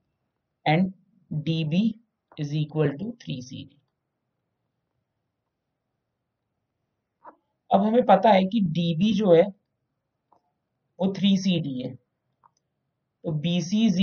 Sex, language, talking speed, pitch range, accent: male, Hindi, 115 wpm, 145-205 Hz, native